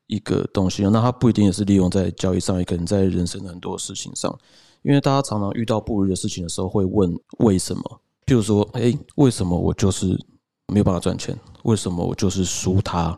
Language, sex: Chinese, male